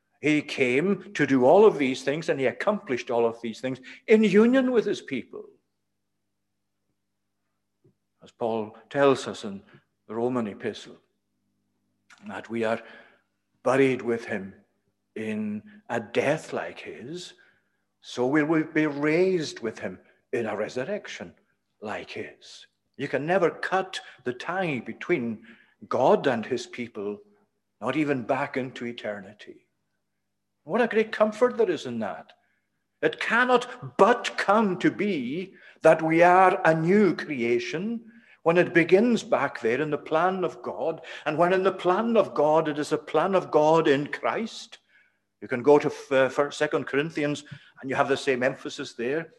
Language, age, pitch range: English, 60-79, 120-180 Hz